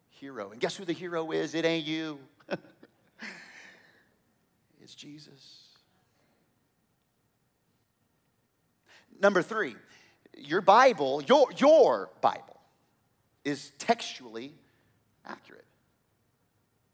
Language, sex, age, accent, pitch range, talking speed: English, male, 30-49, American, 145-200 Hz, 80 wpm